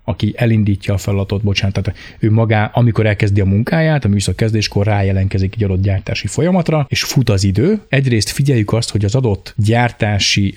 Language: Hungarian